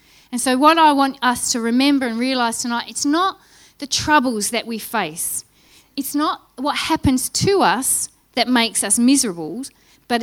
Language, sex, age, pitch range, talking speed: English, female, 30-49, 220-280 Hz, 170 wpm